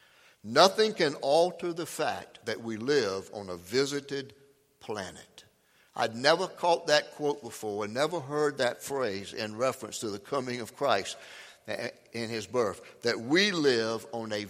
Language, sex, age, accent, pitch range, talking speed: English, male, 60-79, American, 115-175 Hz, 155 wpm